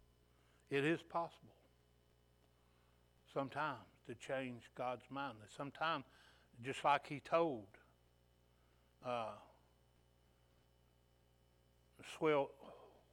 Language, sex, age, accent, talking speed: English, male, 60-79, American, 65 wpm